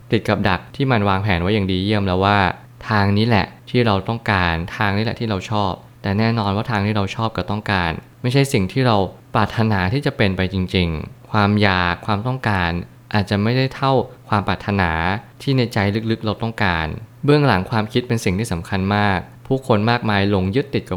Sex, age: male, 20-39